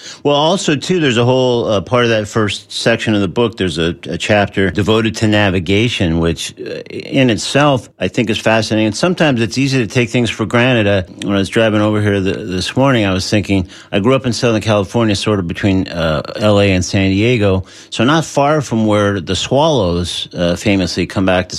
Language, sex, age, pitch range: English, male, 50-69, 95-120 Hz